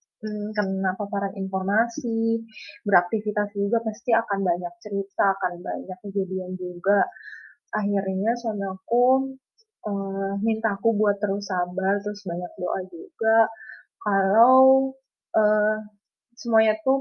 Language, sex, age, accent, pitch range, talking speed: Indonesian, female, 20-39, native, 200-230 Hz, 110 wpm